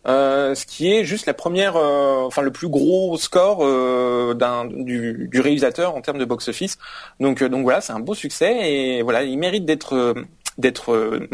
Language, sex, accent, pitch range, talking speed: French, male, French, 130-170 Hz, 200 wpm